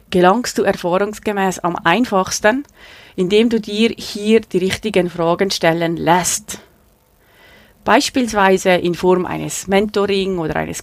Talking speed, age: 115 wpm, 30-49